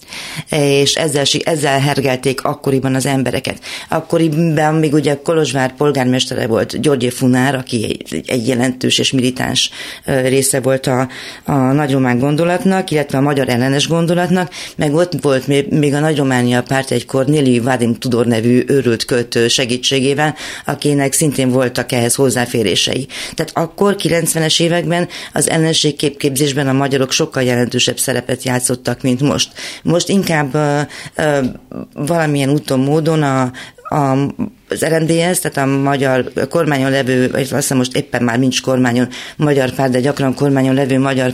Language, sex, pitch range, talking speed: Hungarian, female, 125-145 Hz, 140 wpm